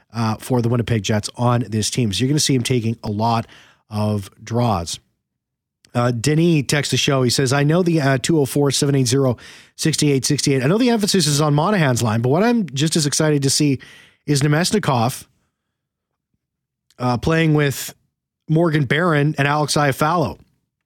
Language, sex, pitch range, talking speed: English, male, 125-155 Hz, 165 wpm